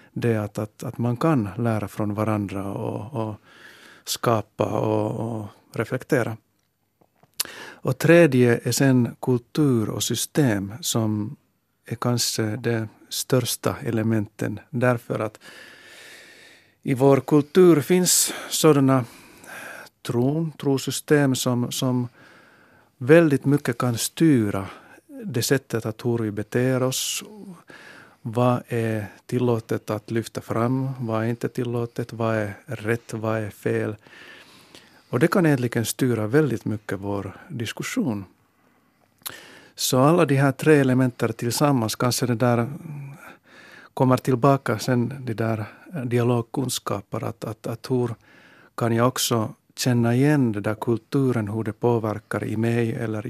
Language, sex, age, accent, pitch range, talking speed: Finnish, male, 50-69, native, 110-135 Hz, 125 wpm